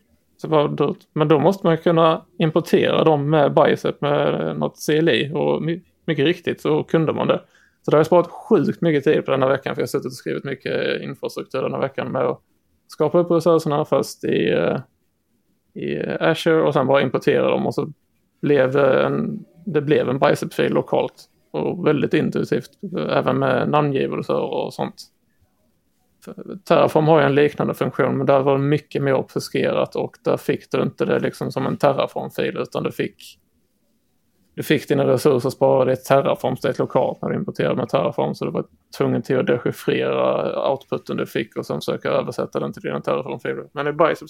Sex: male